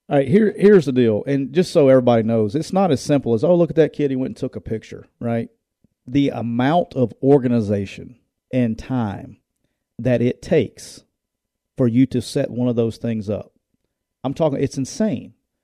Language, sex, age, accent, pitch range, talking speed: English, male, 40-59, American, 115-145 Hz, 190 wpm